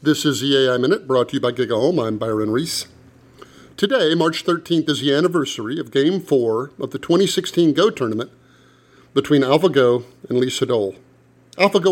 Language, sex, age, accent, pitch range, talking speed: English, male, 50-69, American, 130-160 Hz, 170 wpm